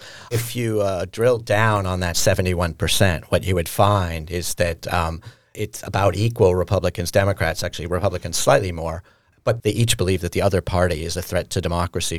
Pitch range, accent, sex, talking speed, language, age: 90-110 Hz, American, male, 180 wpm, English, 40-59